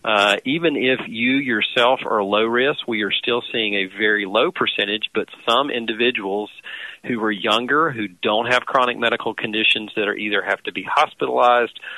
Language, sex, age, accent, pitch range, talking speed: English, male, 40-59, American, 100-115 Hz, 175 wpm